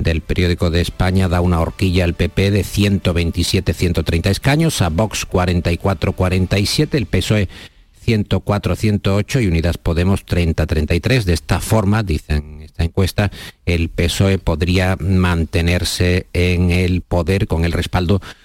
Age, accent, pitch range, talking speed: 50-69, Spanish, 85-100 Hz, 125 wpm